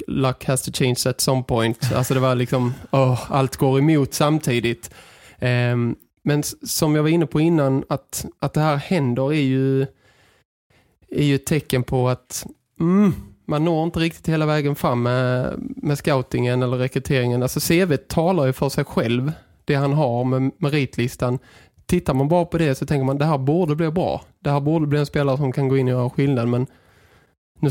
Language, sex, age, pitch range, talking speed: Swedish, male, 20-39, 130-155 Hz, 195 wpm